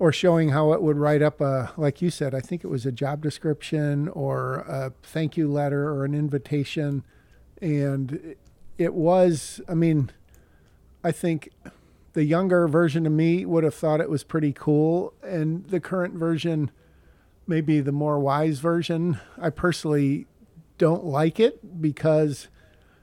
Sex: male